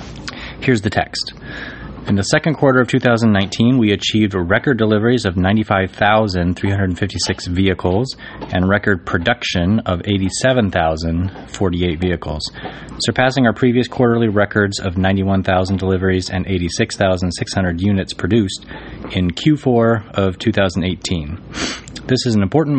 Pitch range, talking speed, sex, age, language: 90-110 Hz, 110 wpm, male, 30-49, English